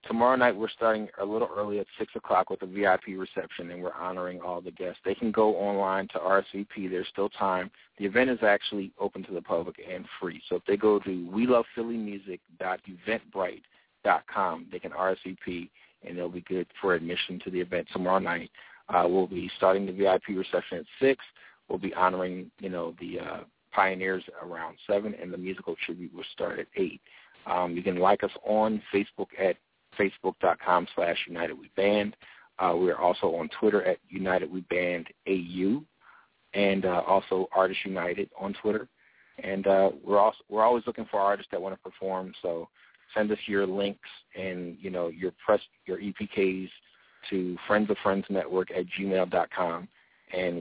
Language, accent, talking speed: English, American, 165 wpm